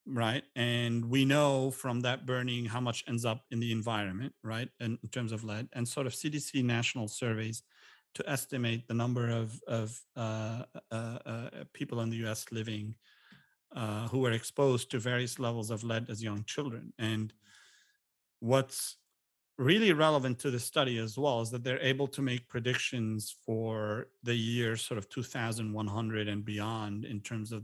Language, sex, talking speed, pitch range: English, male, 170 wpm, 110-130 Hz